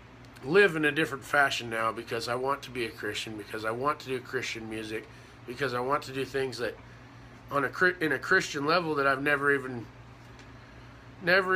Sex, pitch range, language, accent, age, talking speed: male, 130-160 Hz, English, American, 30-49, 195 wpm